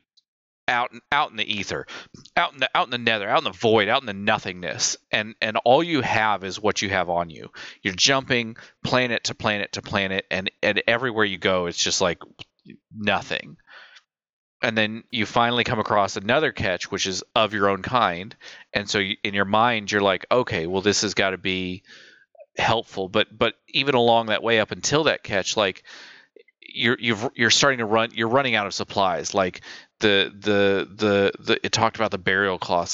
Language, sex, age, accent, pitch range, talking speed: English, male, 30-49, American, 95-115 Hz, 200 wpm